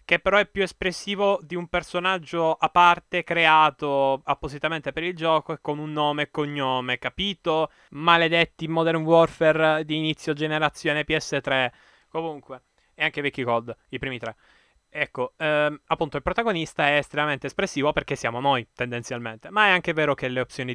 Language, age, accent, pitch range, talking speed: Italian, 10-29, native, 120-155 Hz, 160 wpm